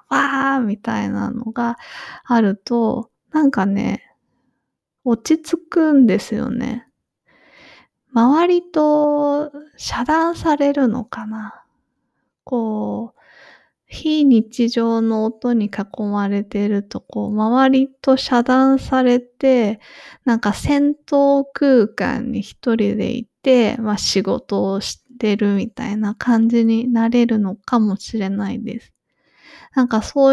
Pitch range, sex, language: 210-260 Hz, female, English